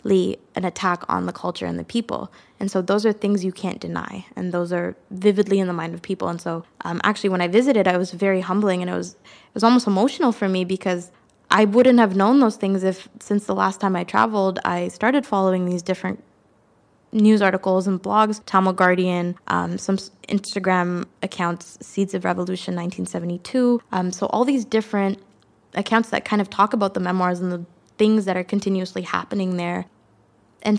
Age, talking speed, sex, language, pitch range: 20-39, 195 wpm, female, English, 180-215 Hz